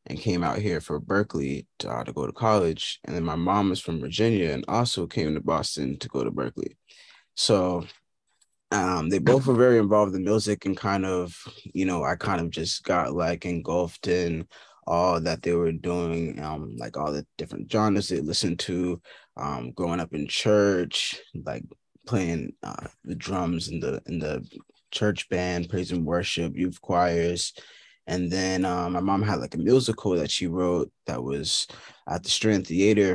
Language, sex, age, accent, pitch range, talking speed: English, male, 20-39, American, 85-100 Hz, 185 wpm